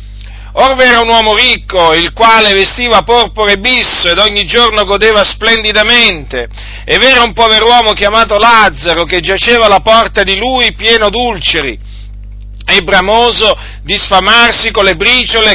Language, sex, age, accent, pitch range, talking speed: Italian, male, 50-69, native, 185-230 Hz, 145 wpm